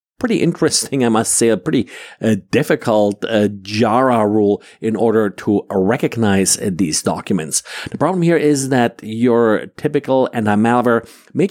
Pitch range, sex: 105-130 Hz, male